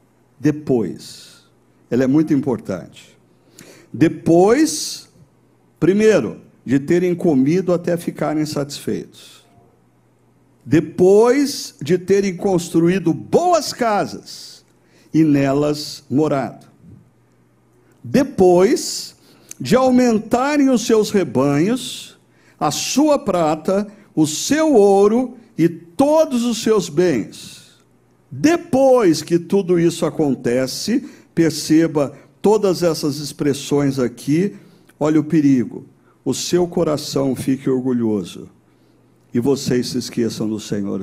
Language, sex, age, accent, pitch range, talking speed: Portuguese, male, 60-79, Brazilian, 130-195 Hz, 90 wpm